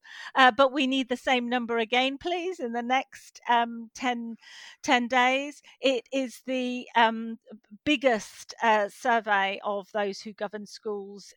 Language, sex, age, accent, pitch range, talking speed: English, female, 40-59, British, 215-260 Hz, 150 wpm